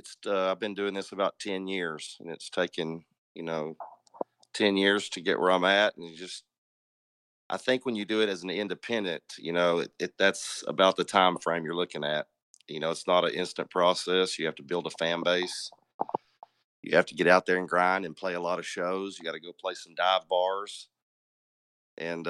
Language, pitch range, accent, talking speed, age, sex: English, 85-100 Hz, American, 220 wpm, 40-59, male